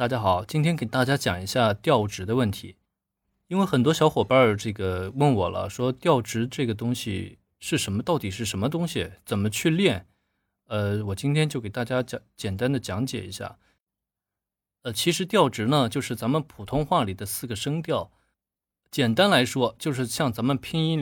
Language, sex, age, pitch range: Chinese, male, 20-39, 100-155 Hz